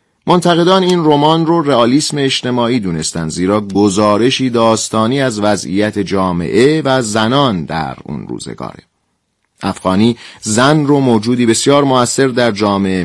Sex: male